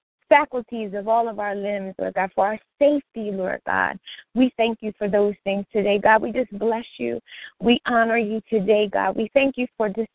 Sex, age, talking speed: female, 20-39, 205 wpm